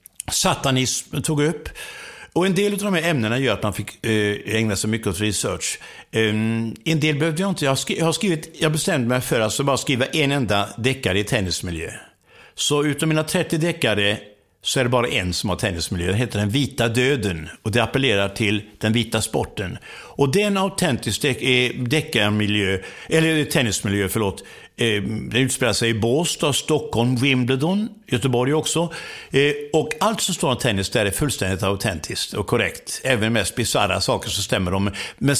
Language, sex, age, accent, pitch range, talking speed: English, male, 60-79, Swedish, 105-145 Hz, 180 wpm